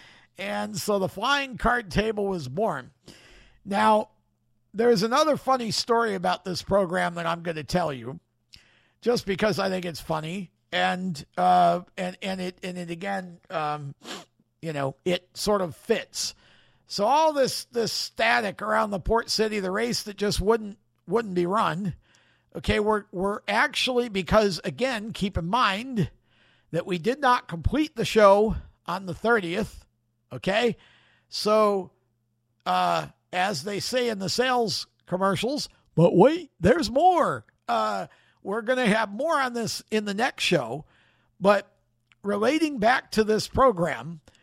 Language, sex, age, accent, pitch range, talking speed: English, male, 50-69, American, 170-220 Hz, 150 wpm